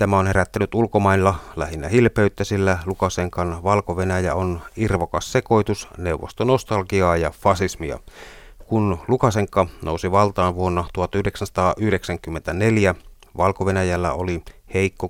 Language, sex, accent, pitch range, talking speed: Finnish, male, native, 90-105 Hz, 100 wpm